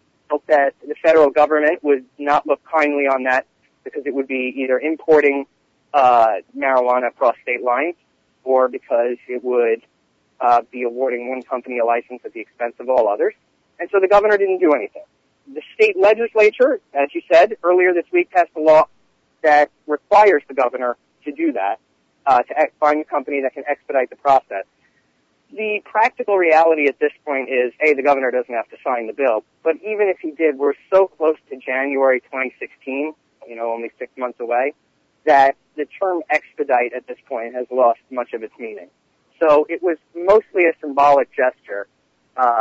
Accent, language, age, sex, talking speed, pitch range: American, English, 40-59, male, 180 wpm, 125-160 Hz